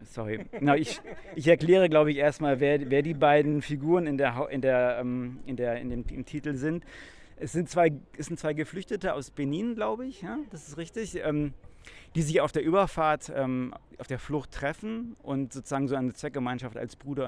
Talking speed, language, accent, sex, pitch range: 200 wpm, German, German, male, 120-145 Hz